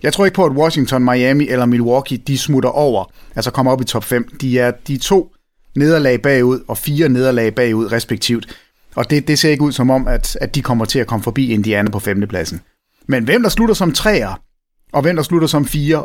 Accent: Danish